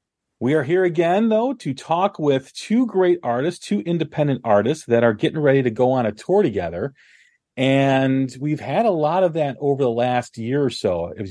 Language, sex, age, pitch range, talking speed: English, male, 40-59, 110-135 Hz, 200 wpm